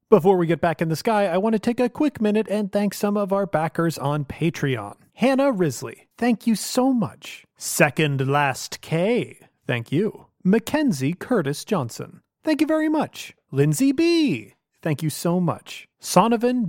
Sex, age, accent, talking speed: male, 30-49, American, 170 wpm